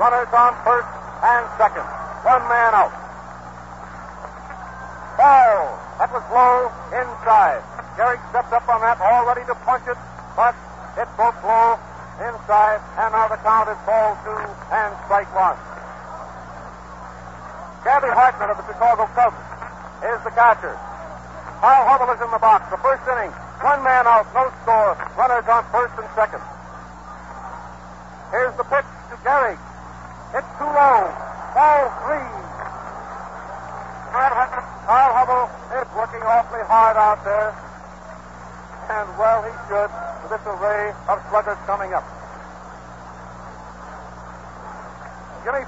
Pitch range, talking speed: 195-240 Hz, 125 wpm